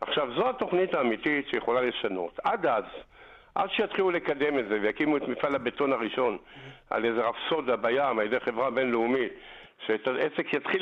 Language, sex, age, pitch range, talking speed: Hebrew, male, 50-69, 125-175 Hz, 155 wpm